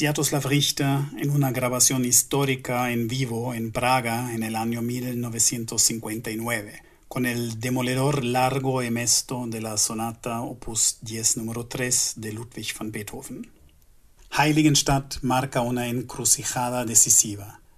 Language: Spanish